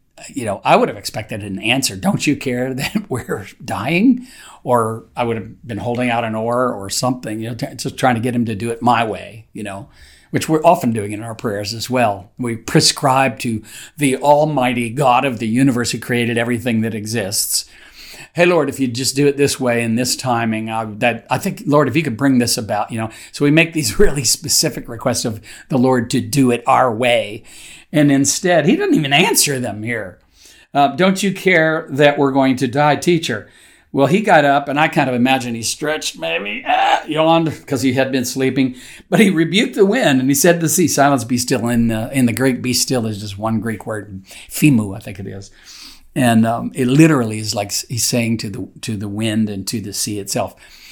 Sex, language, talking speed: male, English, 220 wpm